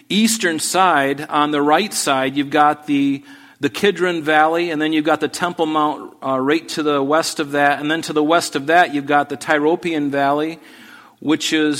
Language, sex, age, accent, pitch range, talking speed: English, male, 40-59, American, 120-155 Hz, 205 wpm